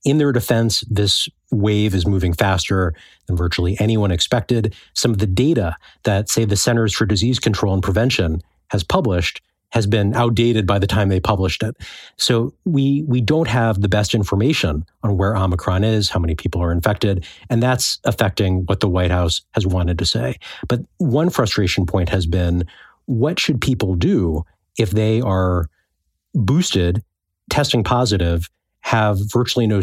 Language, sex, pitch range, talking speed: English, male, 95-115 Hz, 165 wpm